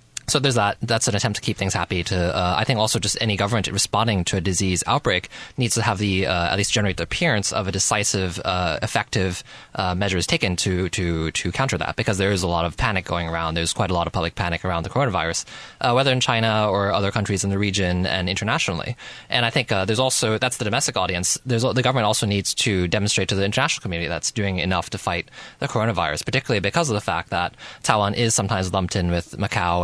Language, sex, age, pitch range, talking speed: English, male, 20-39, 90-115 Hz, 235 wpm